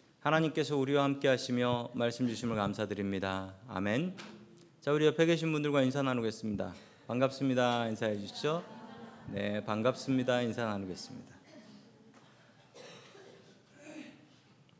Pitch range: 115-155 Hz